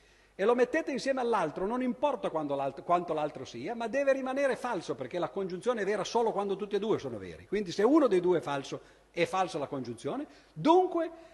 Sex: male